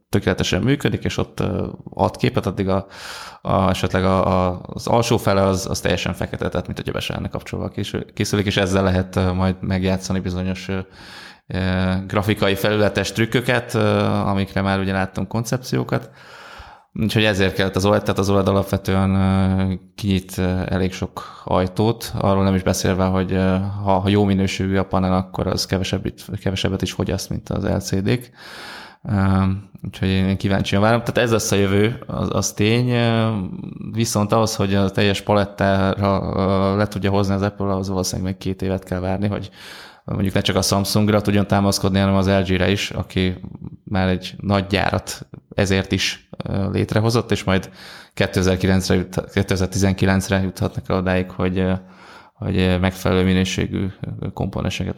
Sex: male